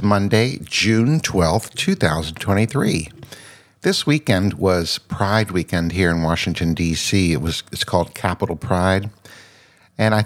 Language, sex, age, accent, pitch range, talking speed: English, male, 60-79, American, 85-110 Hz, 125 wpm